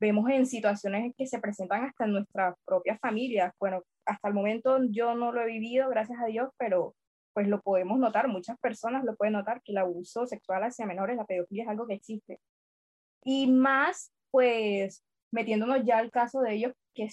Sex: female